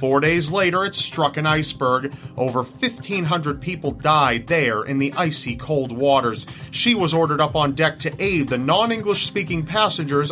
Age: 30-49